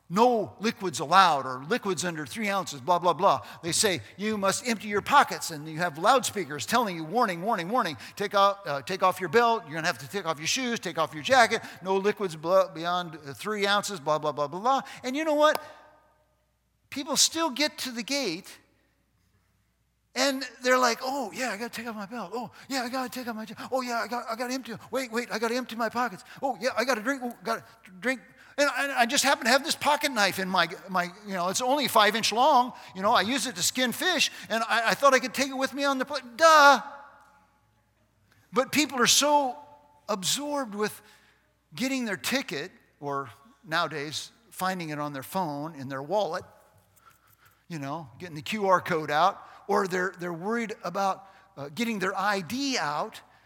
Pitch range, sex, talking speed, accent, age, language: 175-255 Hz, male, 205 wpm, American, 50-69, English